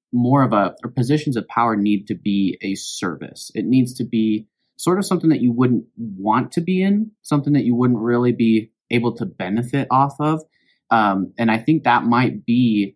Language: English